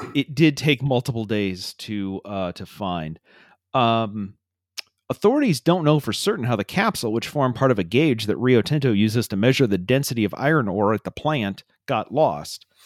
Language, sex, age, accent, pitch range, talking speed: English, male, 40-59, American, 110-155 Hz, 185 wpm